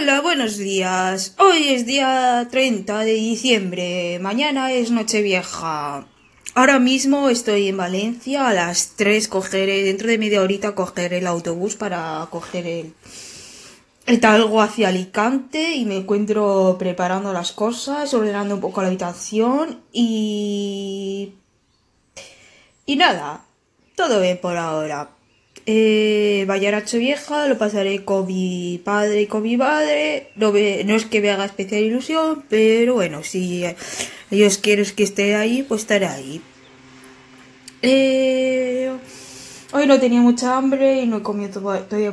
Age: 20-39